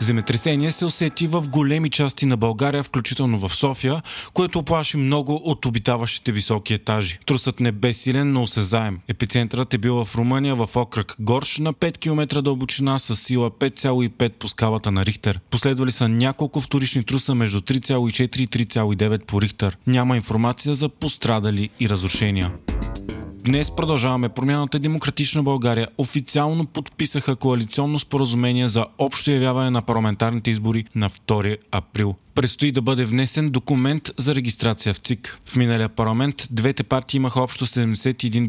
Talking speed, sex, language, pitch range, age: 150 wpm, male, Bulgarian, 110-140 Hz, 20-39